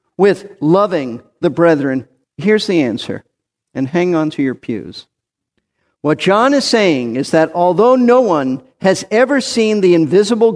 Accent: American